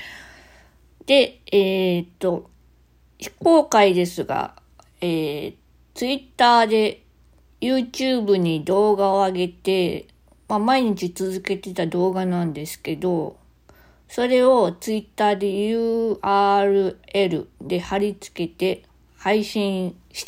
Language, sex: Japanese, female